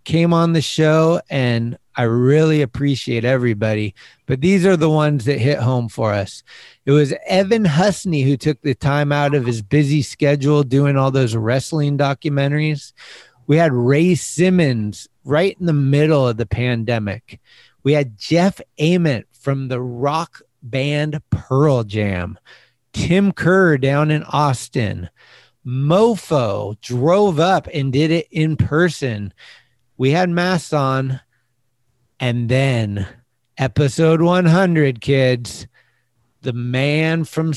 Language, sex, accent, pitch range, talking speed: English, male, American, 125-155 Hz, 135 wpm